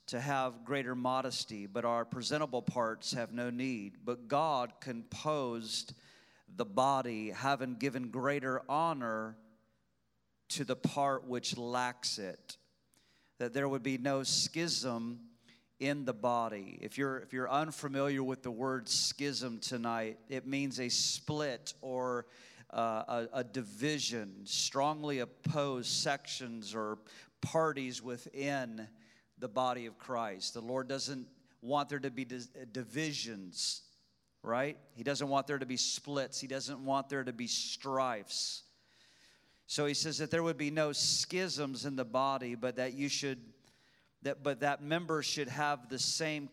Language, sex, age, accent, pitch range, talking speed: English, male, 40-59, American, 120-145 Hz, 145 wpm